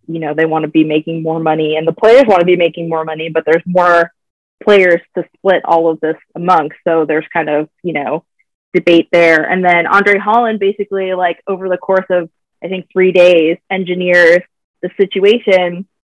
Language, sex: English, female